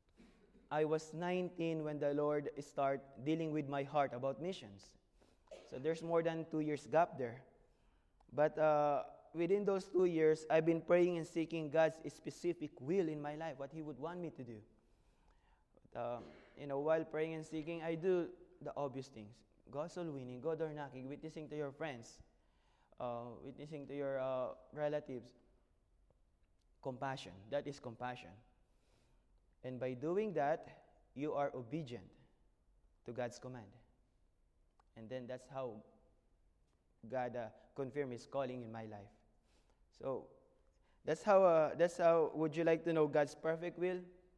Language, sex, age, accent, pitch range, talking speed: English, male, 20-39, Filipino, 125-165 Hz, 150 wpm